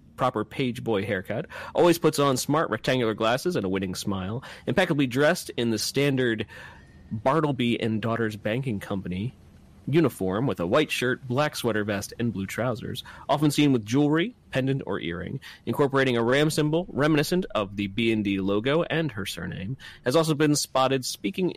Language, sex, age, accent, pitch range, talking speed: English, male, 30-49, American, 100-145 Hz, 165 wpm